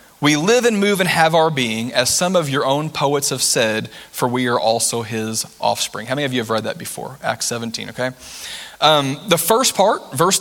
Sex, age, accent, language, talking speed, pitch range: male, 30-49, American, English, 220 wpm, 130-175 Hz